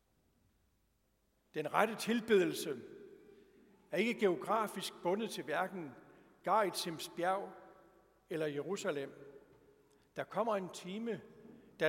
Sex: male